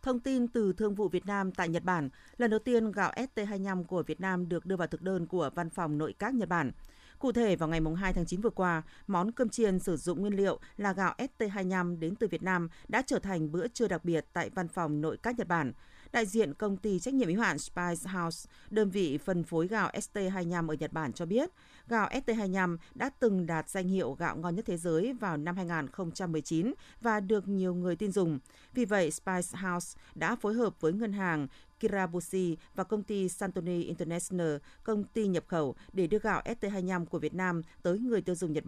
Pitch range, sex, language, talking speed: 170-215 Hz, female, Vietnamese, 220 wpm